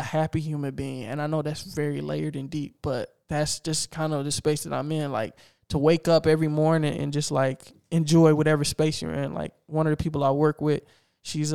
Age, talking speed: 20-39, 235 wpm